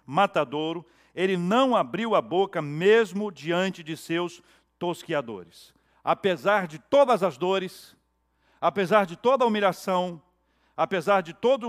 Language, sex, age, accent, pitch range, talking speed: Portuguese, male, 60-79, Brazilian, 160-220 Hz, 125 wpm